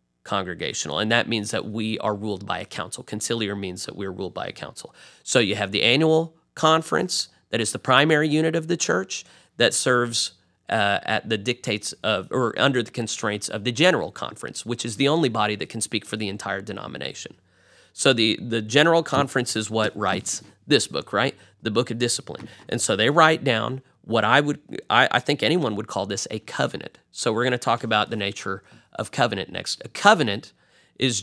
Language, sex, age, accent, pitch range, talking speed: English, male, 30-49, American, 105-145 Hz, 205 wpm